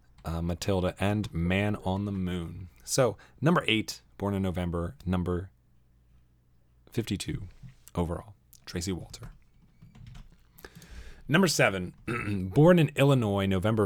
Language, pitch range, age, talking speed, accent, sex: English, 90-125 Hz, 30-49, 105 wpm, American, male